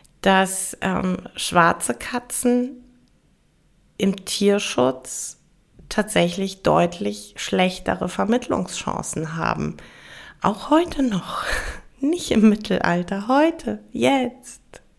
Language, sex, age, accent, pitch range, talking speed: German, female, 20-39, German, 170-210 Hz, 75 wpm